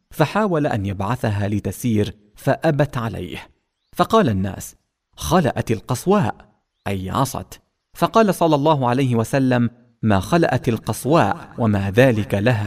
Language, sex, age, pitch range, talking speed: English, male, 40-59, 100-135 Hz, 110 wpm